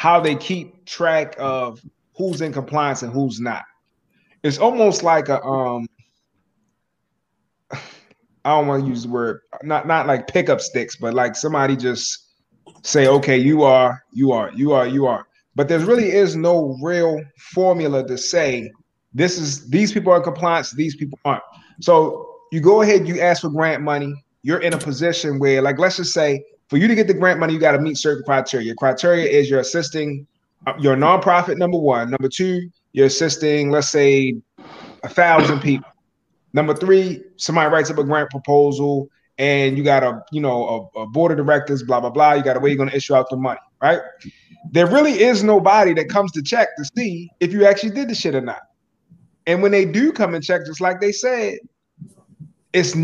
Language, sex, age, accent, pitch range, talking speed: English, male, 20-39, American, 140-180 Hz, 195 wpm